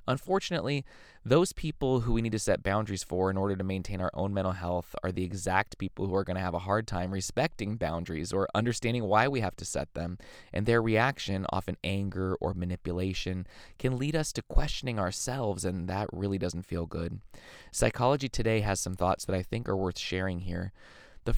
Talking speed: 200 wpm